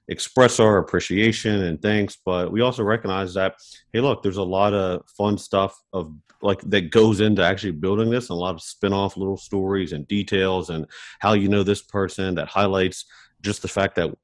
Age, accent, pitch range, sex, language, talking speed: 40-59, American, 85-100 Hz, male, English, 200 wpm